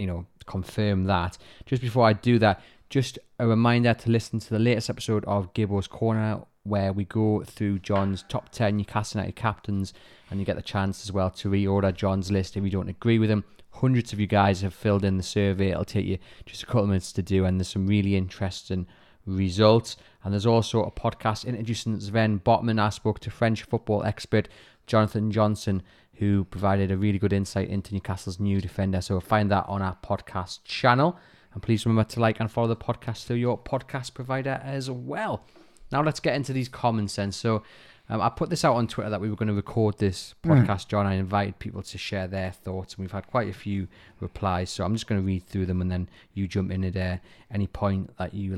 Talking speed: 220 wpm